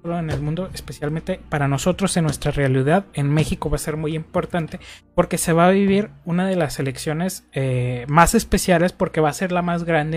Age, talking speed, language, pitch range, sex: 20-39, 205 wpm, Spanish, 140-170 Hz, male